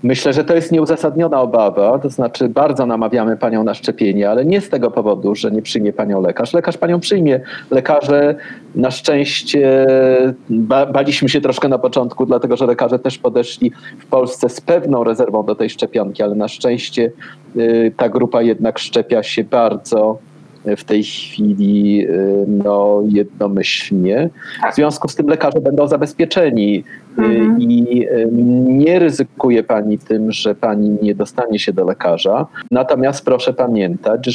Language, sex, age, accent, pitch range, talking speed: Polish, male, 40-59, native, 110-130 Hz, 150 wpm